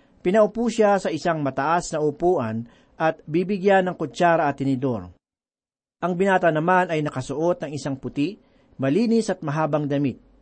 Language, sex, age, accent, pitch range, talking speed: Filipino, male, 40-59, native, 145-195 Hz, 145 wpm